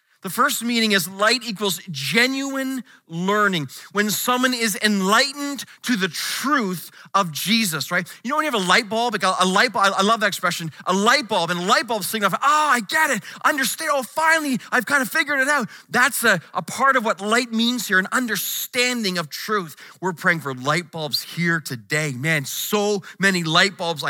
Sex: male